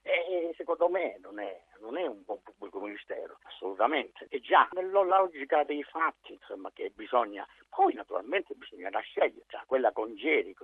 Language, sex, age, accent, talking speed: Italian, male, 50-69, native, 165 wpm